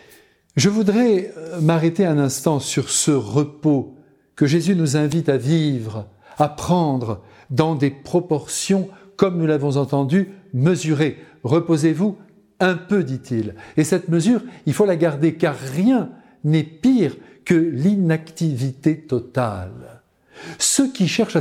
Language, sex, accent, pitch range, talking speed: French, male, French, 140-190 Hz, 125 wpm